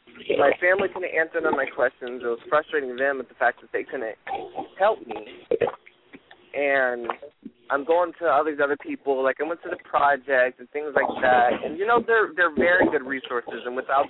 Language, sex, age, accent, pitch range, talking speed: English, male, 20-39, American, 120-150 Hz, 210 wpm